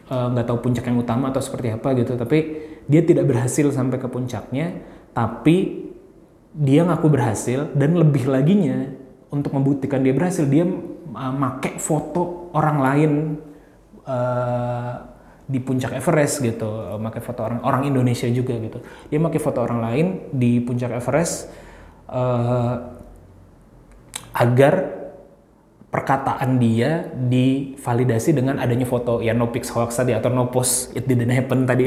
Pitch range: 120-145 Hz